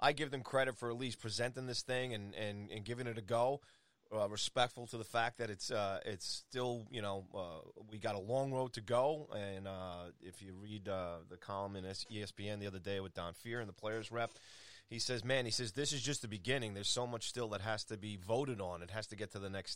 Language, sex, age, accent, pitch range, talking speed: English, male, 30-49, American, 105-140 Hz, 250 wpm